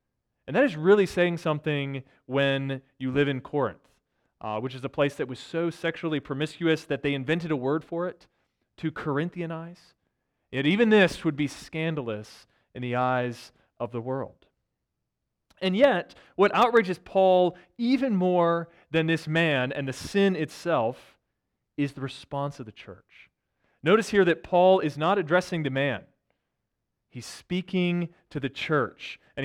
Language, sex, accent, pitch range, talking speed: English, male, American, 145-195 Hz, 155 wpm